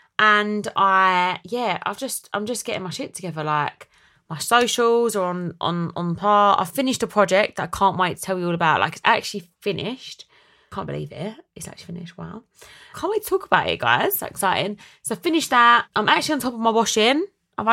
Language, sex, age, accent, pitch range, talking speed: English, female, 20-39, British, 170-225 Hz, 220 wpm